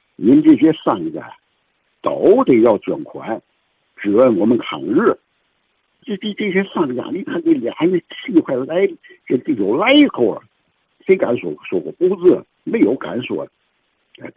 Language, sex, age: Chinese, male, 60-79